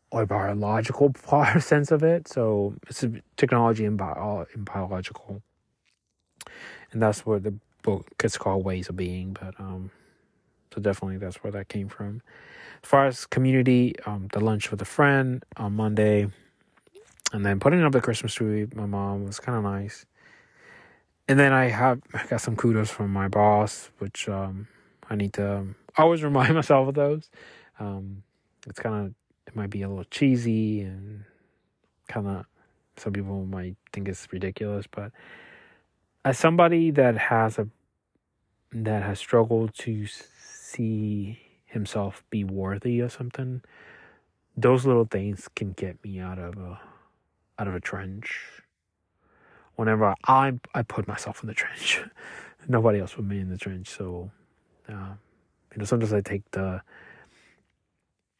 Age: 20-39